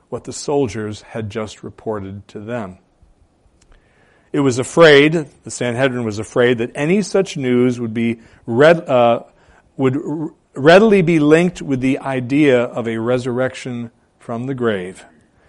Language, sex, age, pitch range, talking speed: English, male, 40-59, 115-160 Hz, 145 wpm